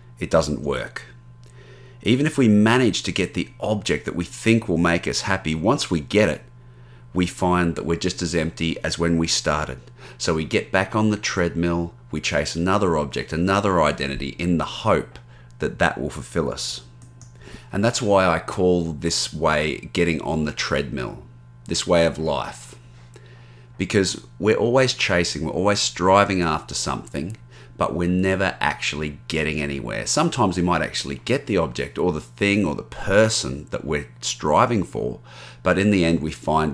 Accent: Australian